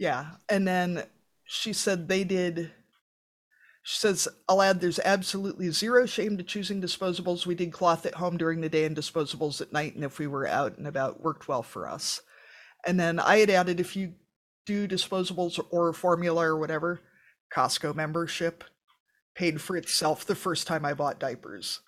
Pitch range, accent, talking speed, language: 155-190 Hz, American, 180 wpm, English